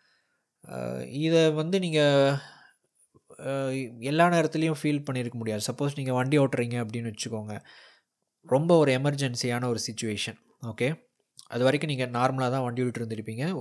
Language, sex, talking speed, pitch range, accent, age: Tamil, male, 120 wpm, 115-145 Hz, native, 20-39